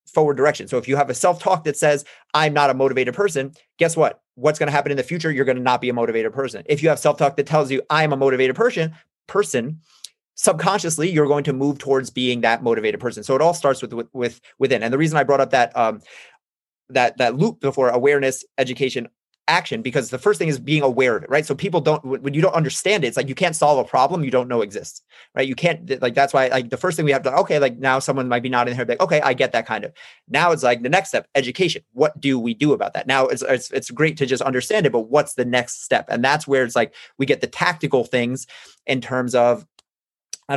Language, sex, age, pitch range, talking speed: English, male, 30-49, 130-155 Hz, 260 wpm